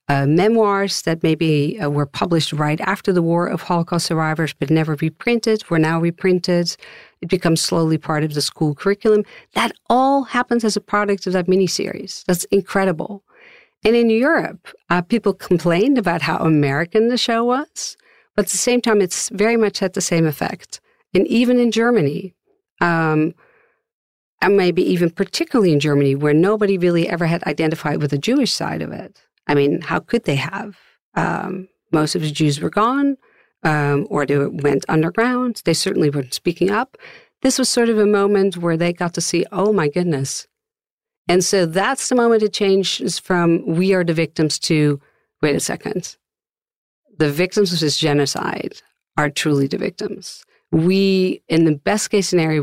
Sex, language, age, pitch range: female, English, 50-69, 160-210 Hz